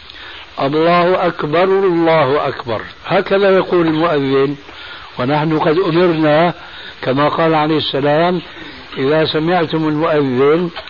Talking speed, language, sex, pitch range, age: 95 wpm, Arabic, male, 145-180 Hz, 60-79